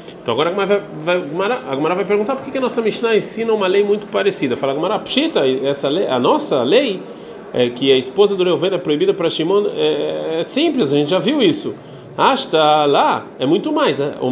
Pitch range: 150-235 Hz